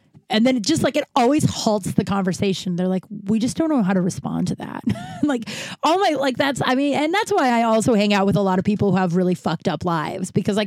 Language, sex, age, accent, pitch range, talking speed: English, female, 30-49, American, 190-240 Hz, 270 wpm